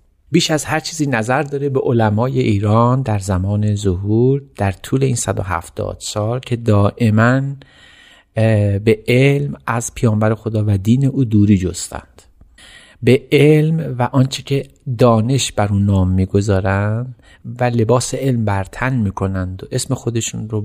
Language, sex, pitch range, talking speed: Persian, male, 100-130 Hz, 140 wpm